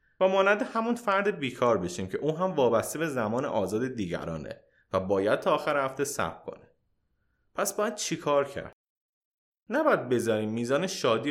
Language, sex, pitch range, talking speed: Persian, male, 115-175 Hz, 155 wpm